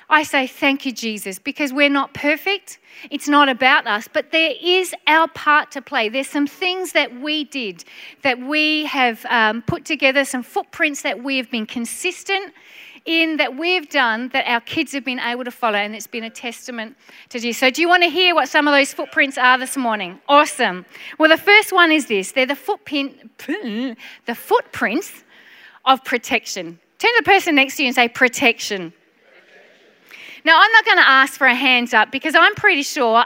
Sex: female